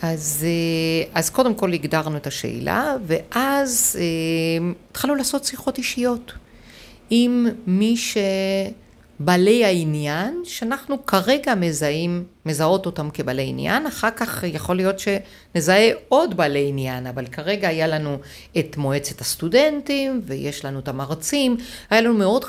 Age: 50-69